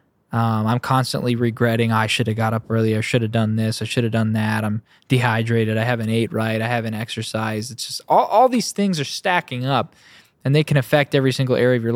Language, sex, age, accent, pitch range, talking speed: English, male, 20-39, American, 120-145 Hz, 240 wpm